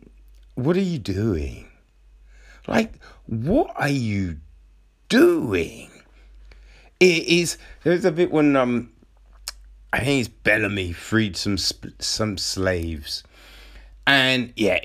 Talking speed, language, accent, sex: 110 wpm, English, British, male